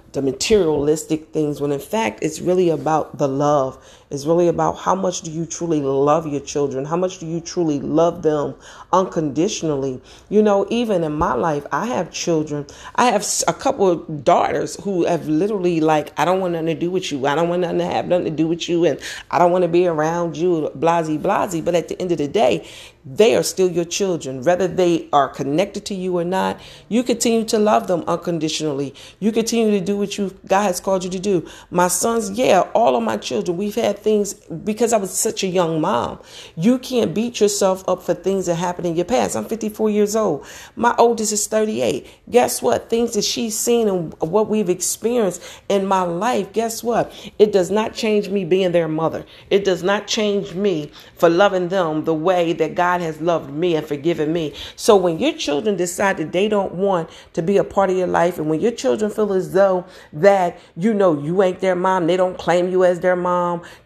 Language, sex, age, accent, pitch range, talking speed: English, female, 40-59, American, 165-200 Hz, 215 wpm